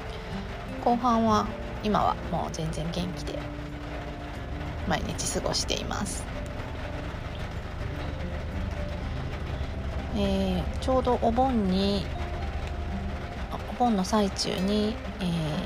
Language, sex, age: Japanese, female, 40-59